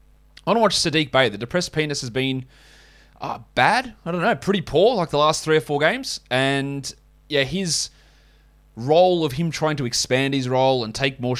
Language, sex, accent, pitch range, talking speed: English, male, Australian, 120-150 Hz, 205 wpm